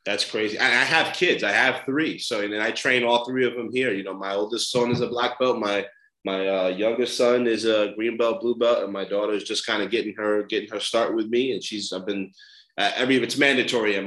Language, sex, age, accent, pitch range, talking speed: English, male, 20-39, American, 100-120 Hz, 265 wpm